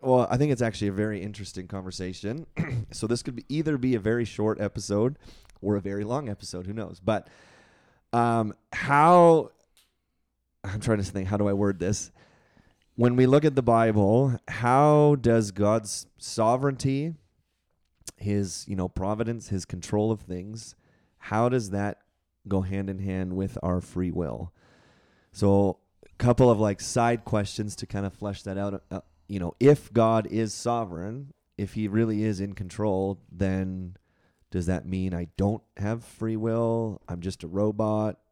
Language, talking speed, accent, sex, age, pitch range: English, 165 wpm, American, male, 30-49, 95-115 Hz